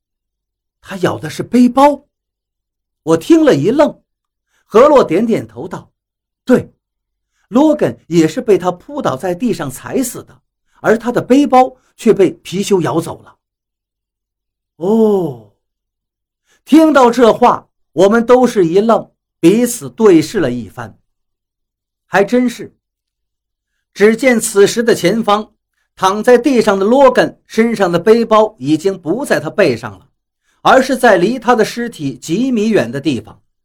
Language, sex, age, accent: Chinese, male, 50-69, native